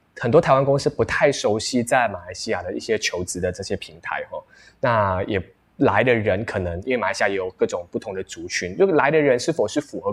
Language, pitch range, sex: Chinese, 110-155 Hz, male